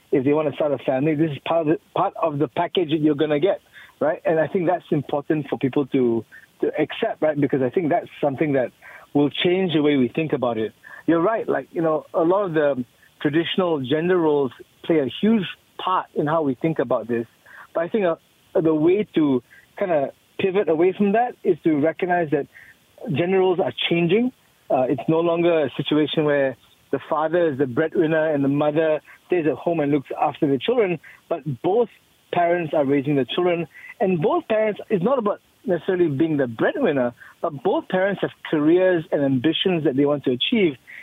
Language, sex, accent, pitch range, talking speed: English, male, Malaysian, 150-180 Hz, 205 wpm